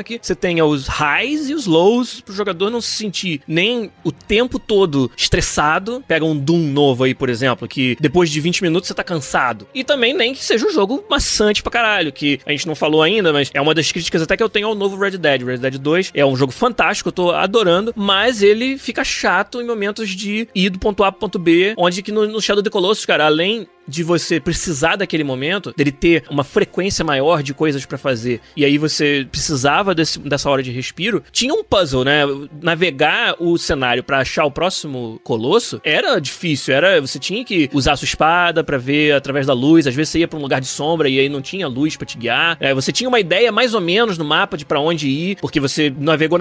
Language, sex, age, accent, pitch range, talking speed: Portuguese, male, 20-39, Brazilian, 145-205 Hz, 230 wpm